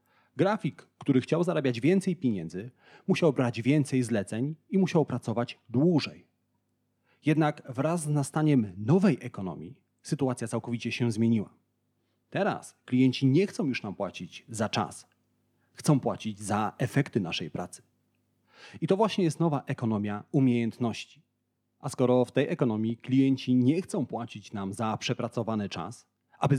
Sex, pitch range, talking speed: male, 115-150 Hz, 135 wpm